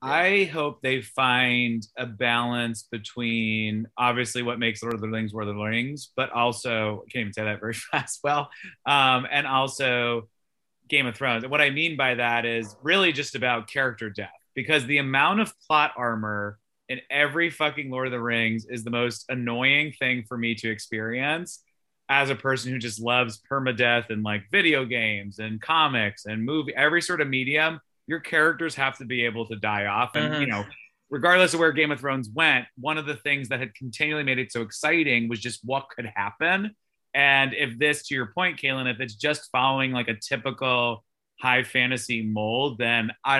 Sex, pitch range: male, 115-140 Hz